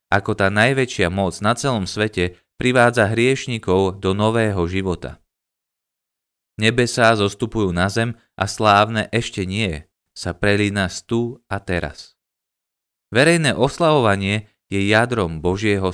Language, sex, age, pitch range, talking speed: Slovak, male, 20-39, 85-110 Hz, 115 wpm